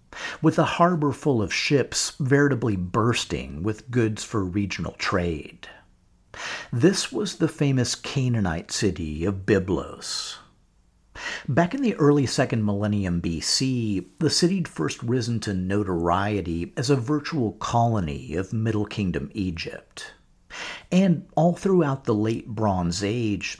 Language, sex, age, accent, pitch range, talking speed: English, male, 50-69, American, 95-145 Hz, 125 wpm